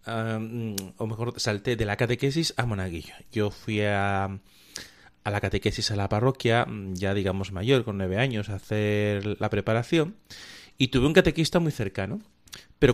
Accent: Spanish